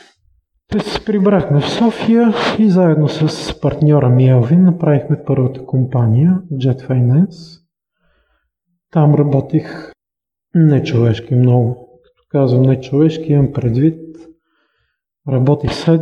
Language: Bulgarian